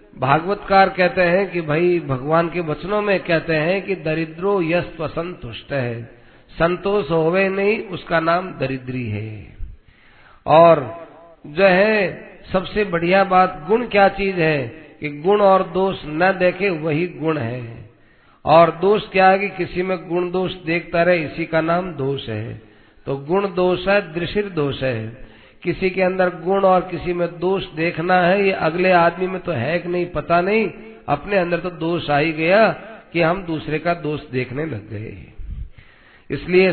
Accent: native